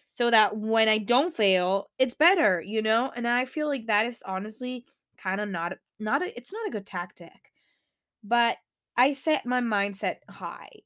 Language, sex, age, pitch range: English, female, 10-29, 195-250 Hz